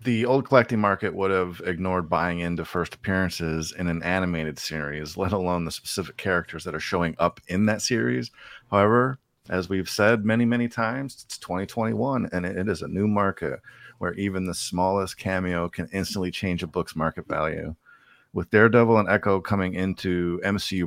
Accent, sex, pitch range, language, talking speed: American, male, 90-110 Hz, English, 175 wpm